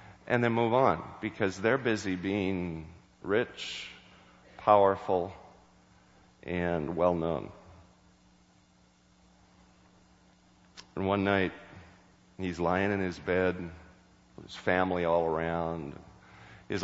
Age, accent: 50-69, American